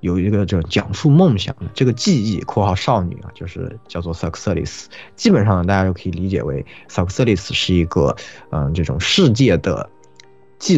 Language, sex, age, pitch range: Chinese, male, 20-39, 90-125 Hz